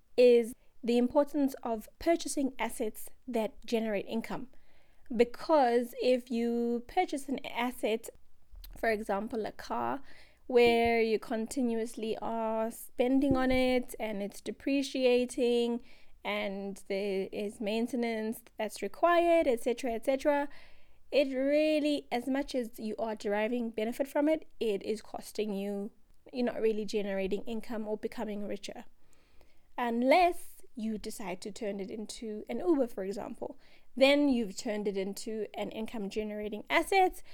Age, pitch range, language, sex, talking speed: 20-39, 215-270 Hz, English, female, 130 wpm